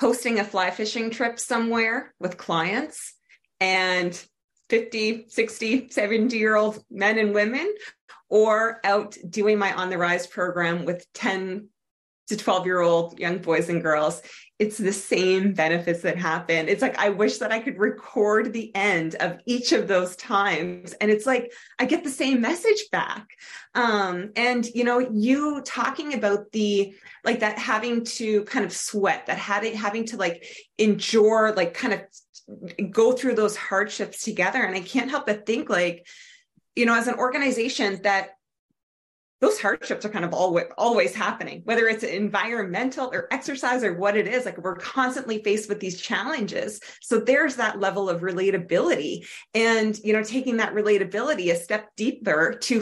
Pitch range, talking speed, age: 185-240 Hz, 165 wpm, 30-49